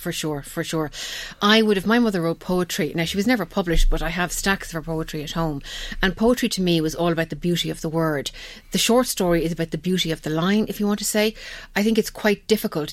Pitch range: 160-190 Hz